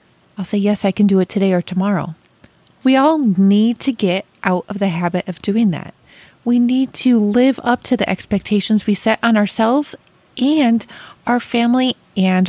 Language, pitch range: English, 190-240 Hz